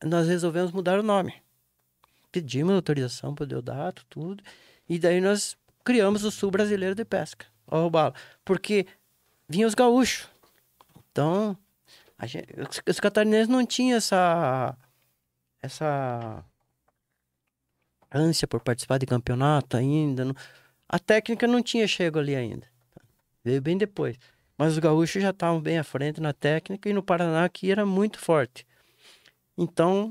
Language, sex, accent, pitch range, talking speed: Portuguese, male, Brazilian, 140-195 Hz, 135 wpm